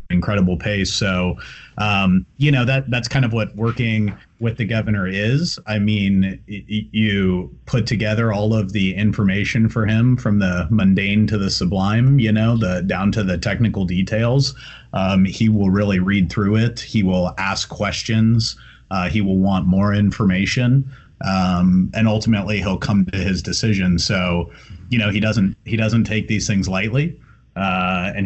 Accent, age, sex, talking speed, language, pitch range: American, 30-49, male, 170 wpm, English, 90-110 Hz